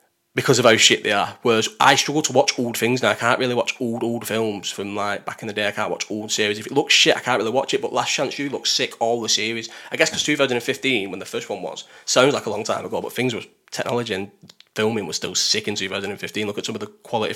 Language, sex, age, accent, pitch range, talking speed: English, male, 20-39, British, 110-145 Hz, 285 wpm